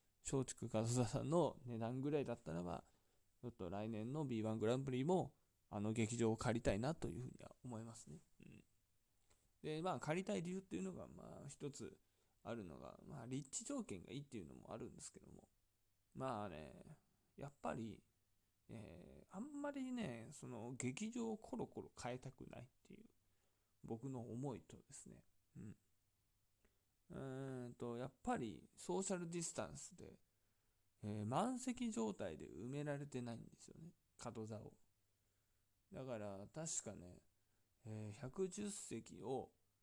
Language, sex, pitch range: Japanese, male, 100-155 Hz